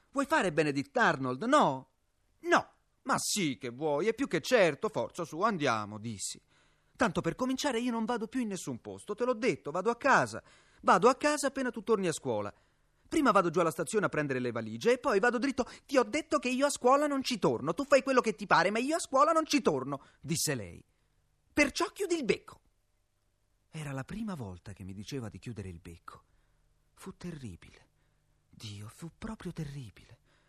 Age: 30-49